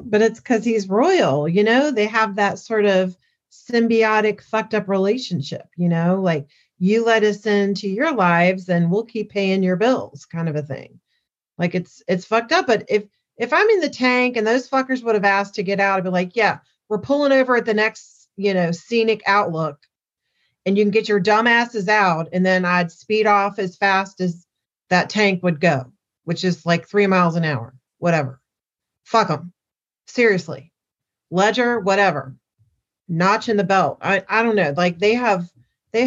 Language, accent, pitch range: English, American, 175-230 Hz